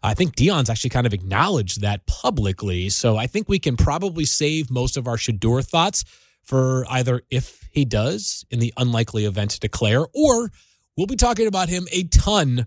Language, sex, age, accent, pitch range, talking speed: English, male, 30-49, American, 110-150 Hz, 190 wpm